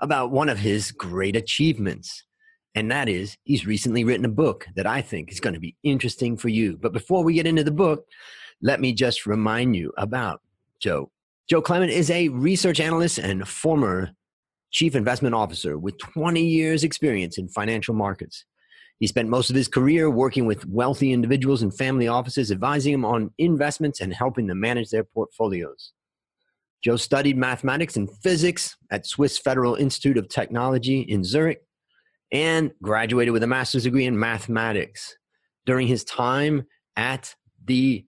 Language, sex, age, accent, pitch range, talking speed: English, male, 30-49, American, 110-145 Hz, 165 wpm